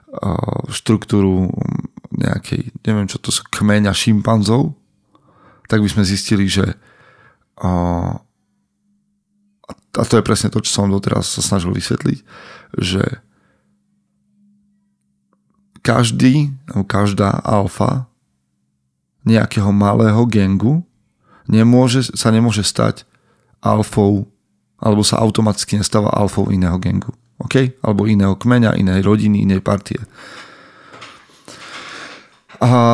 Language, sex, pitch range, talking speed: Slovak, male, 100-115 Hz, 95 wpm